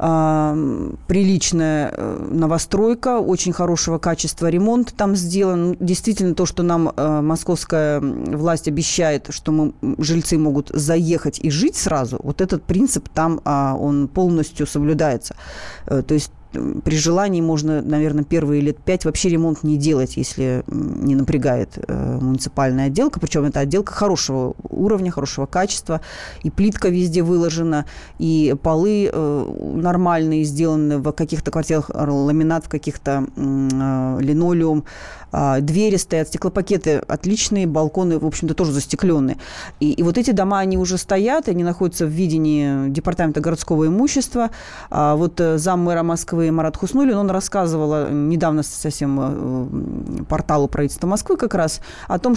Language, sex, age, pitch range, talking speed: Russian, female, 30-49, 150-185 Hz, 125 wpm